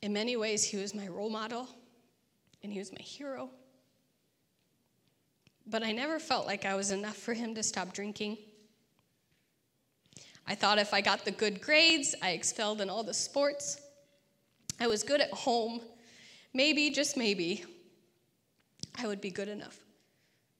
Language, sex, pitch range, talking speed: English, female, 195-240 Hz, 155 wpm